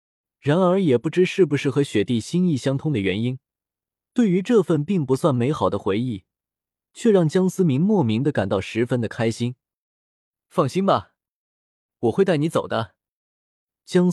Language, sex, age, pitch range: Chinese, male, 20-39, 110-165 Hz